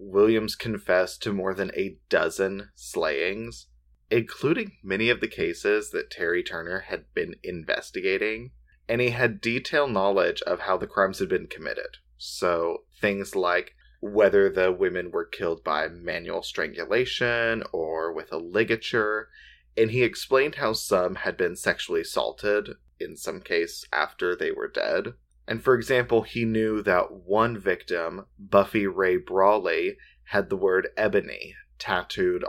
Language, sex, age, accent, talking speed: English, male, 20-39, American, 145 wpm